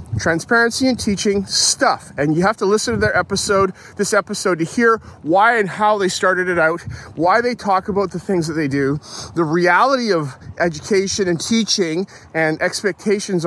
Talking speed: 180 wpm